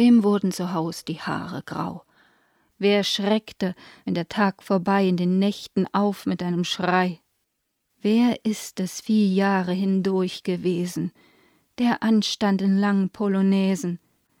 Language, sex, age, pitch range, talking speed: German, female, 30-49, 180-225 Hz, 135 wpm